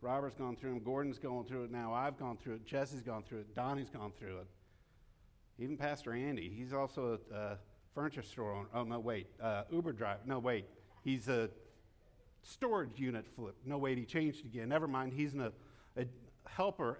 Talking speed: 200 wpm